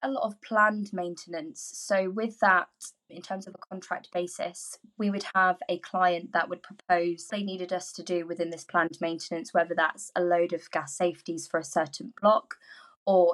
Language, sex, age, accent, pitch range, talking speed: English, female, 20-39, British, 165-190 Hz, 195 wpm